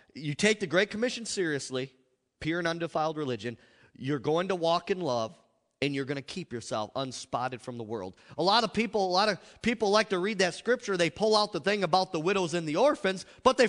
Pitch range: 155-230 Hz